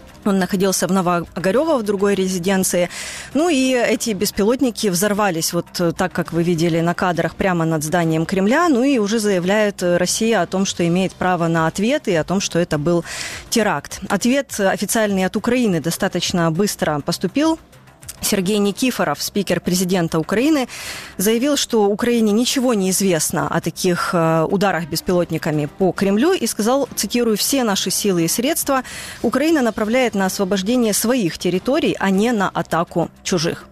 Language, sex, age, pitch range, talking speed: Ukrainian, female, 20-39, 180-225 Hz, 150 wpm